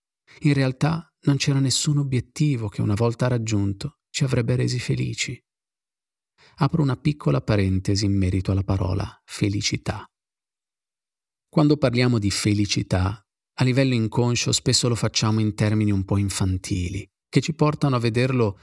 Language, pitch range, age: Italian, 105-130 Hz, 40-59